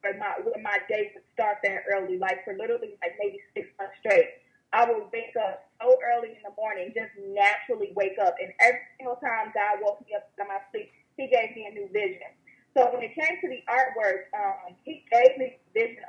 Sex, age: female, 20-39